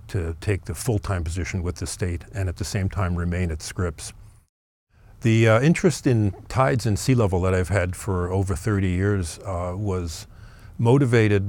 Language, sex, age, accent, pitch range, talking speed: English, male, 50-69, American, 95-110 Hz, 180 wpm